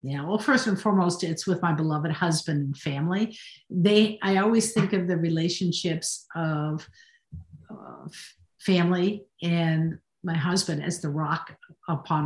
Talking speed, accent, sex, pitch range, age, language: 140 wpm, American, female, 175-220 Hz, 50-69, English